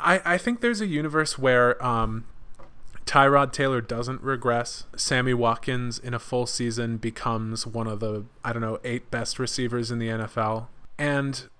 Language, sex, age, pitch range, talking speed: English, male, 20-39, 115-135 Hz, 165 wpm